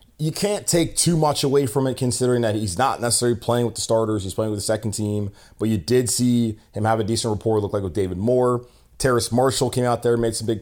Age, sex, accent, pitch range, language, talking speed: 20-39, male, American, 100-125 Hz, English, 260 wpm